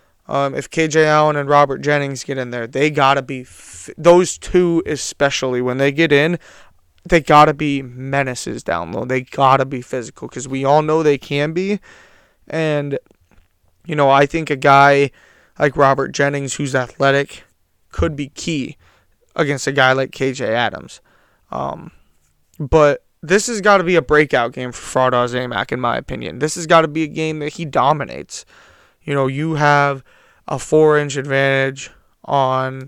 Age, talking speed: 20-39, 180 wpm